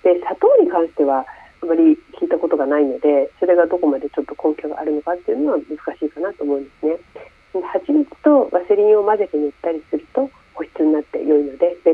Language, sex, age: Japanese, female, 40-59